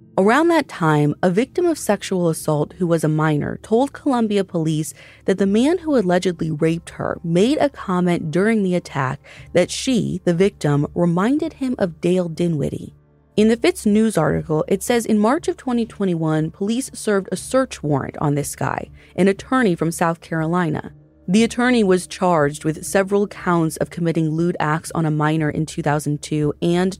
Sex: female